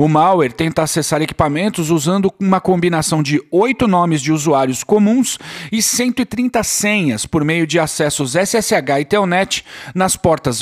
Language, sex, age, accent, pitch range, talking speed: Portuguese, male, 50-69, Brazilian, 160-205 Hz, 145 wpm